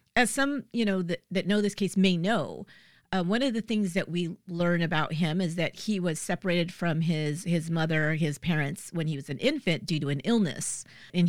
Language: English